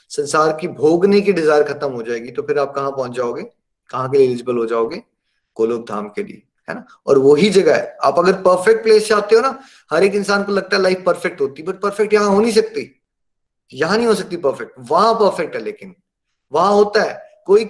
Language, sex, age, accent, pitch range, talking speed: Hindi, male, 20-39, native, 160-205 Hz, 205 wpm